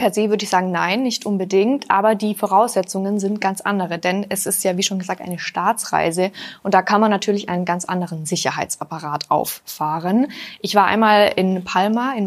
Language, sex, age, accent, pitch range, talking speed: German, female, 20-39, German, 185-220 Hz, 190 wpm